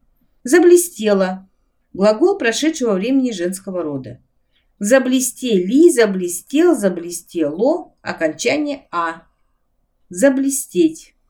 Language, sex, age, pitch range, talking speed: Russian, female, 50-69, 165-270 Hz, 65 wpm